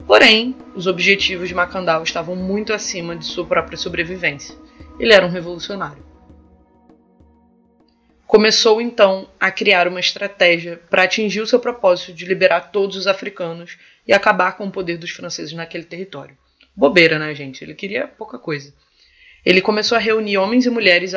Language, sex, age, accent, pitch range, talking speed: Portuguese, female, 20-39, Brazilian, 170-205 Hz, 155 wpm